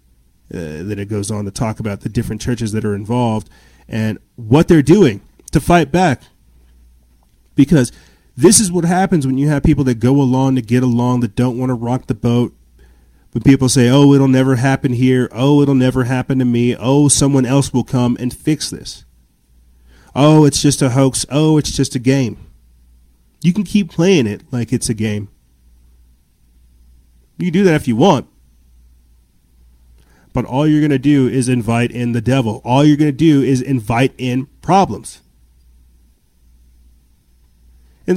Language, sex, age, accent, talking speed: English, male, 30-49, American, 175 wpm